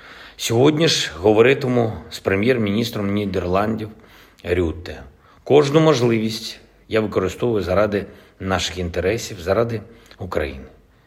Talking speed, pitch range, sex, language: 85 wpm, 95-120 Hz, male, Ukrainian